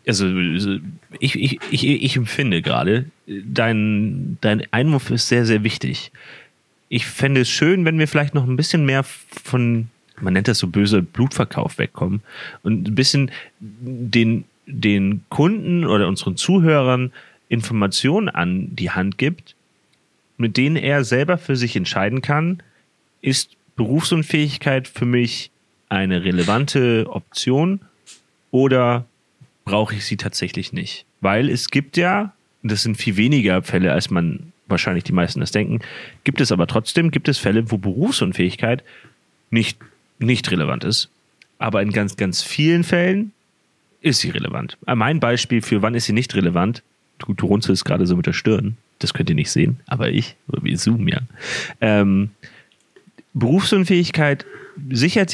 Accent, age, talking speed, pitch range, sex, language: German, 30-49, 150 wpm, 105-150 Hz, male, German